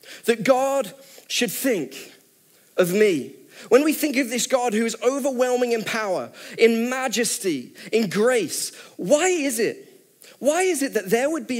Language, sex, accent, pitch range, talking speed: English, male, British, 180-245 Hz, 160 wpm